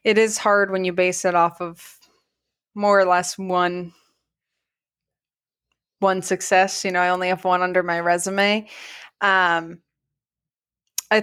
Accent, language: American, English